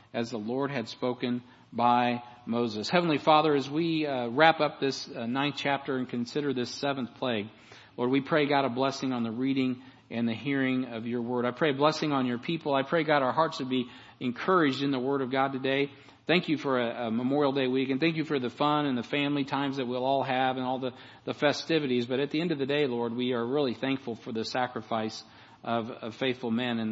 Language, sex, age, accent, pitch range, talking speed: English, male, 50-69, American, 120-140 Hz, 235 wpm